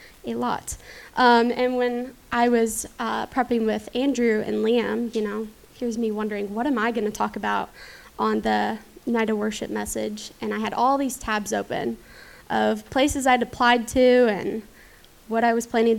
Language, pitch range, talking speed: English, 215-245 Hz, 180 wpm